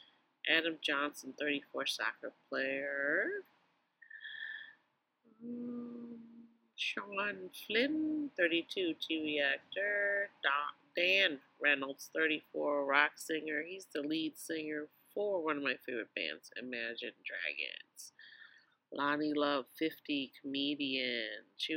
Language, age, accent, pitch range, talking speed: English, 40-59, American, 145-190 Hz, 90 wpm